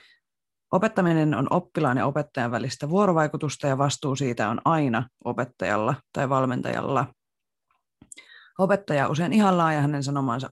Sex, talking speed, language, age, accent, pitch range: female, 120 wpm, Finnish, 20-39, native, 135-160 Hz